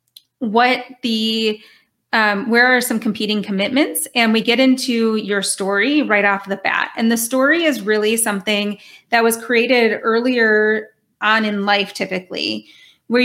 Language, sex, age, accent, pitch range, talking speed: English, female, 30-49, American, 205-245 Hz, 150 wpm